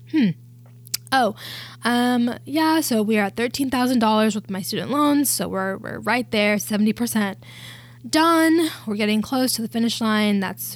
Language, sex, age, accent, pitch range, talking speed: English, female, 10-29, American, 195-230 Hz, 175 wpm